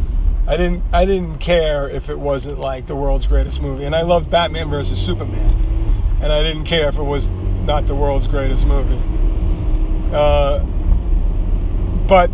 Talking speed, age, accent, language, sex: 160 wpm, 40-59, American, English, male